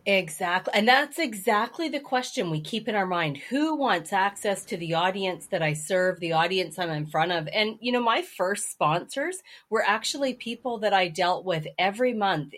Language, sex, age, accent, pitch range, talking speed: English, female, 30-49, American, 180-235 Hz, 195 wpm